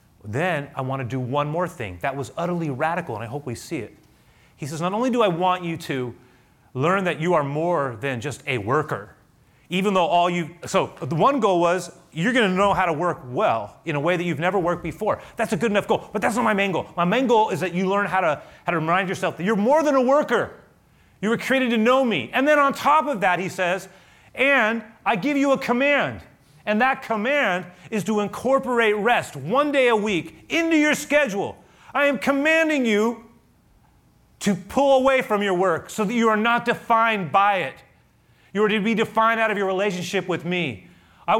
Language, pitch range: English, 150-225 Hz